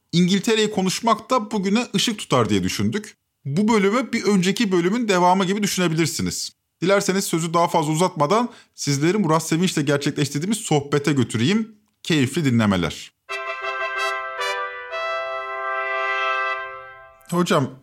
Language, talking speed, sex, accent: Turkish, 105 wpm, male, native